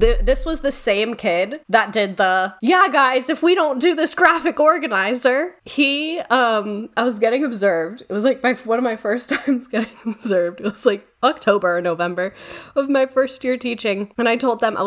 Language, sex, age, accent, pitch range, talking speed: English, female, 10-29, American, 205-300 Hz, 200 wpm